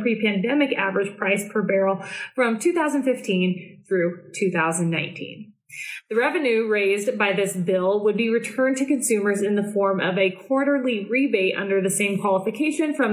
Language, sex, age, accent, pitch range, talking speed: English, female, 20-39, American, 185-245 Hz, 145 wpm